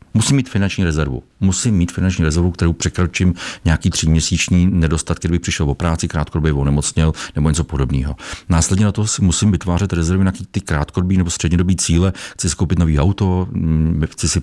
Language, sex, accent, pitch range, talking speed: Czech, male, native, 80-95 Hz, 170 wpm